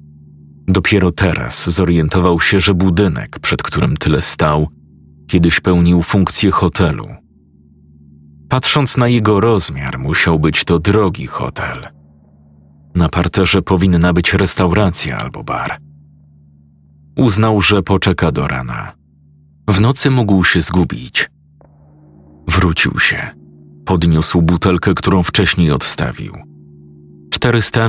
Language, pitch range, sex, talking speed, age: Polish, 75-95 Hz, male, 105 wpm, 40-59